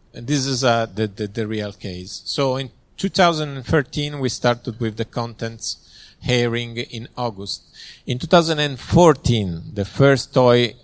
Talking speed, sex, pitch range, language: 140 wpm, male, 110-140 Hz, Croatian